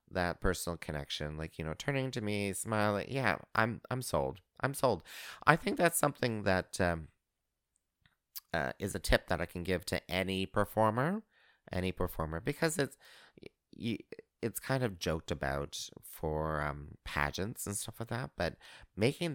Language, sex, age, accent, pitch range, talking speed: English, male, 30-49, American, 80-120 Hz, 160 wpm